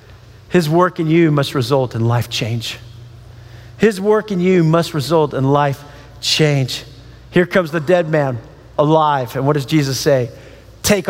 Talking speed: 160 wpm